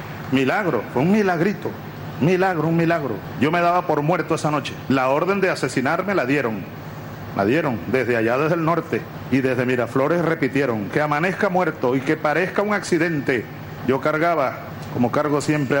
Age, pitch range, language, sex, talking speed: 40-59, 140-175 Hz, Spanish, male, 165 wpm